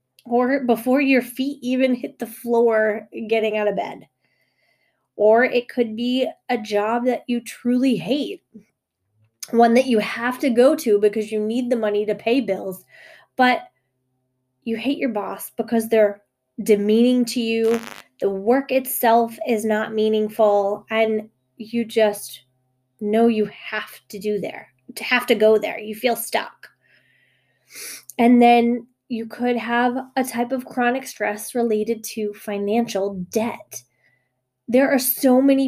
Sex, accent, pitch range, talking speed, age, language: female, American, 210-240 Hz, 150 wpm, 20-39, English